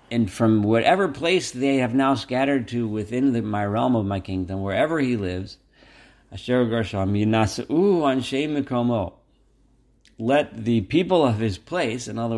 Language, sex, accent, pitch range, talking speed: English, male, American, 105-130 Hz, 125 wpm